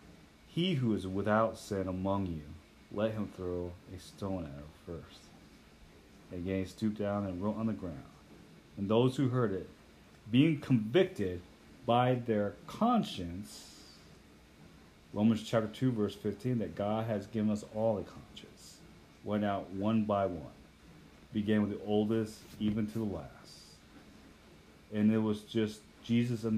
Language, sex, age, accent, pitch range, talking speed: English, male, 40-59, American, 90-110 Hz, 150 wpm